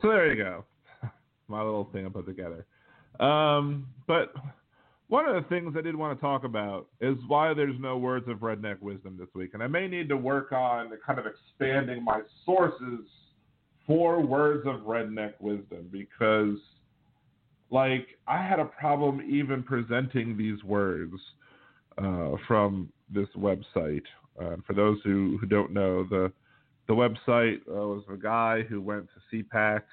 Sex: male